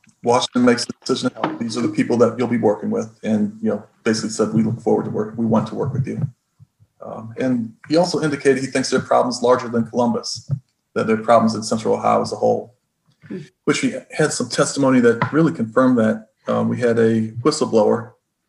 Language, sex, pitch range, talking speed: English, male, 110-135 Hz, 210 wpm